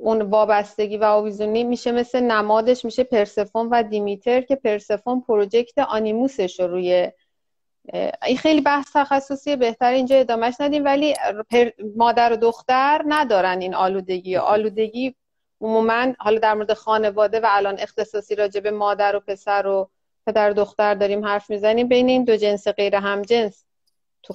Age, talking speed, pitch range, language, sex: 30-49, 145 wpm, 205-255 Hz, Persian, female